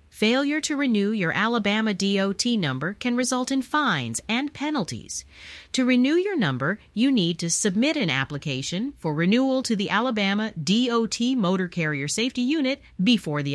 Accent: American